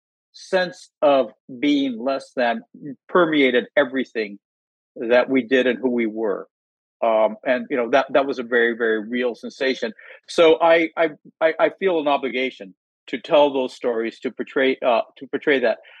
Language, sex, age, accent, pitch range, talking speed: English, male, 50-69, American, 125-160 Hz, 160 wpm